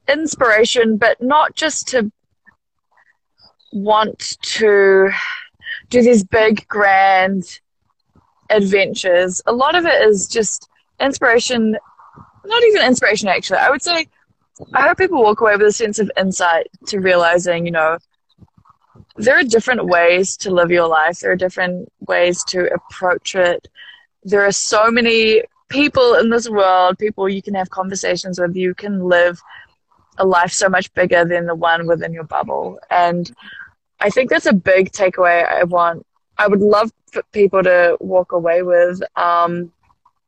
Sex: female